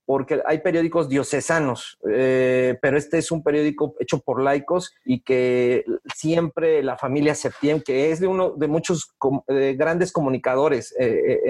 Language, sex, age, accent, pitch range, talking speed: English, male, 40-59, Mexican, 135-160 Hz, 155 wpm